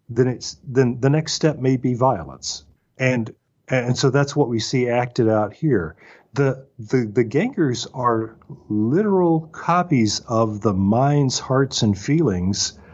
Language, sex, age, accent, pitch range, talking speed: English, male, 40-59, American, 105-140 Hz, 150 wpm